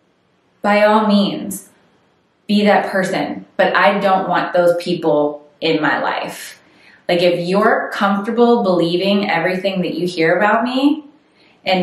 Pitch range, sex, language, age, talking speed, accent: 175-210 Hz, female, English, 20-39, 135 wpm, American